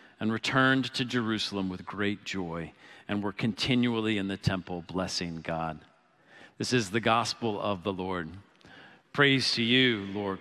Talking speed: 150 wpm